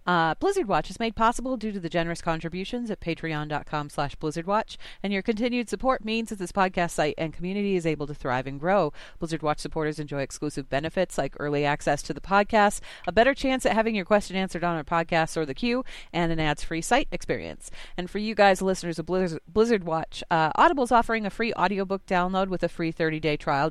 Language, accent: English, American